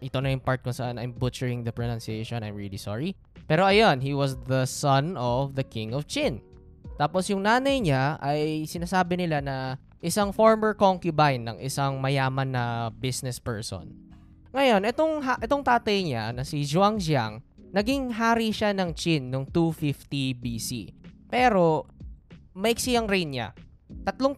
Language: Filipino